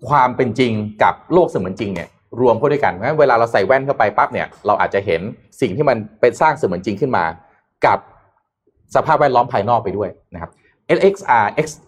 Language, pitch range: Thai, 100-130 Hz